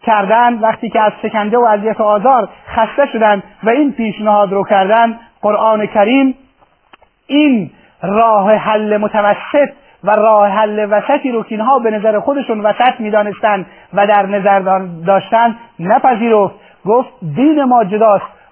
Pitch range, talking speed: 215-250 Hz, 135 wpm